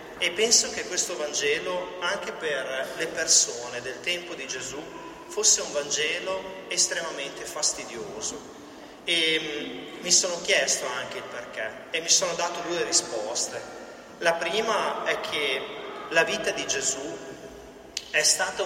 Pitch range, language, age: 155-180 Hz, Italian, 30-49